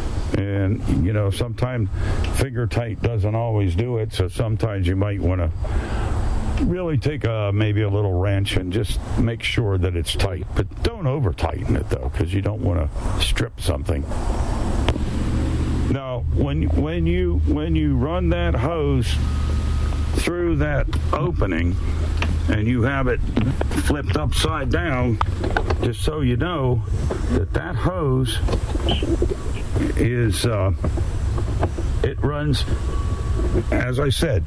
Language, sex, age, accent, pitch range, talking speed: English, male, 60-79, American, 85-115 Hz, 130 wpm